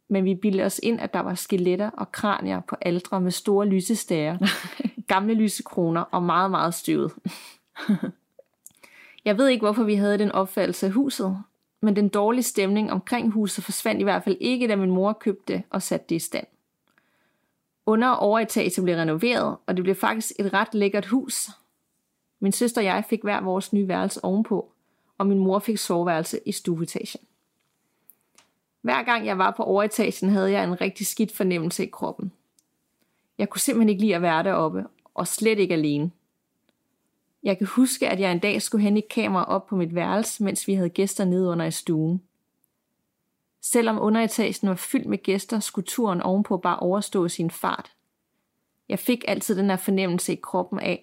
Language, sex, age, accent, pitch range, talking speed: Danish, female, 30-49, native, 185-220 Hz, 180 wpm